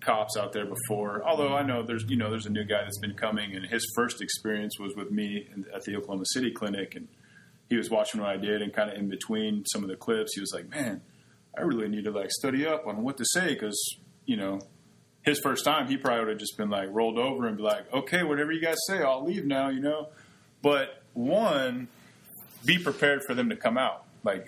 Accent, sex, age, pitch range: American, male, 30-49, 105-145 Hz